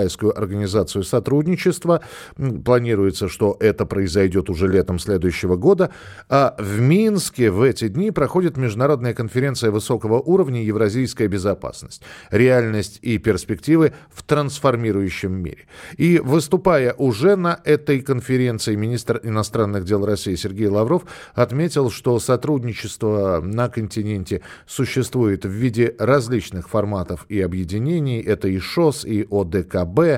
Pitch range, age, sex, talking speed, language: 105-145 Hz, 50-69, male, 115 wpm, Russian